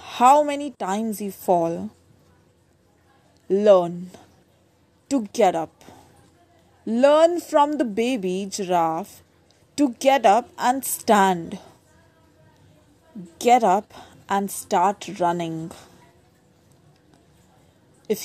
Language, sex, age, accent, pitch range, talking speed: Hindi, female, 30-49, native, 180-240 Hz, 80 wpm